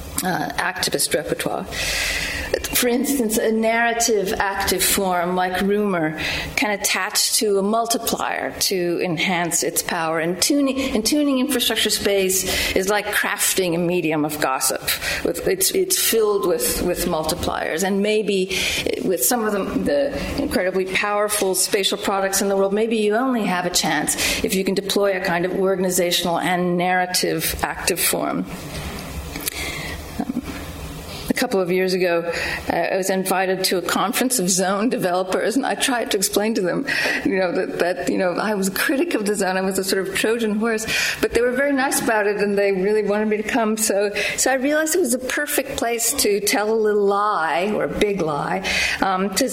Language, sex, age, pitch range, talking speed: English, female, 40-59, 185-225 Hz, 180 wpm